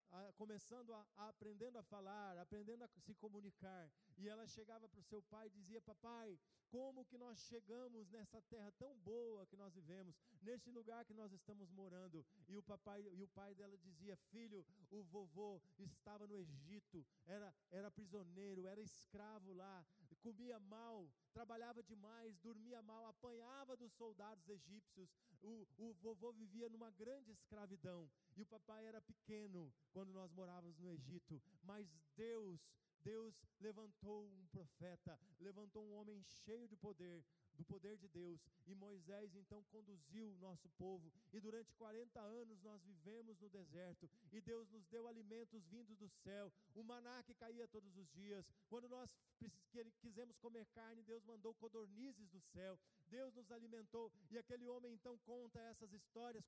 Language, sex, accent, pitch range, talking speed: Portuguese, male, Brazilian, 190-225 Hz, 160 wpm